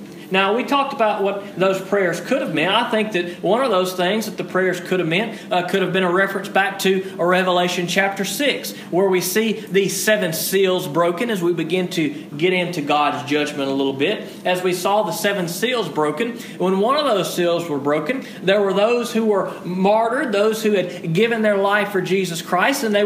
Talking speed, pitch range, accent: 215 wpm, 175-215 Hz, American